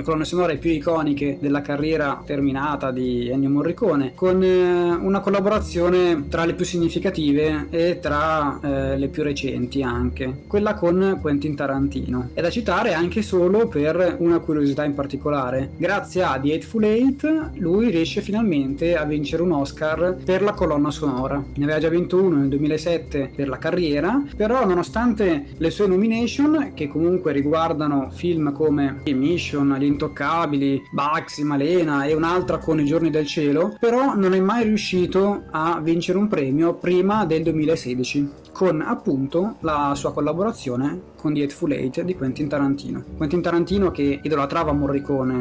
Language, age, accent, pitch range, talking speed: Italian, 20-39, native, 140-175 Hz, 150 wpm